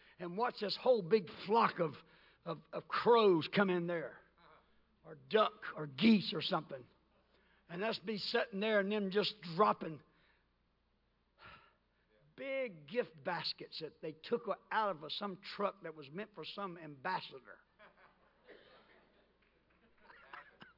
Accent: American